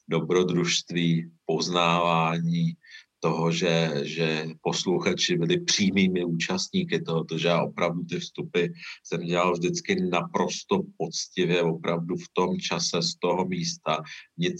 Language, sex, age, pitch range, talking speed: Czech, male, 50-69, 80-90 Hz, 115 wpm